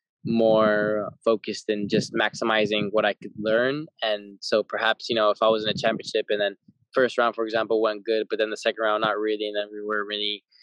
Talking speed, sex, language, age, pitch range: 225 wpm, male, English, 10-29, 105-115 Hz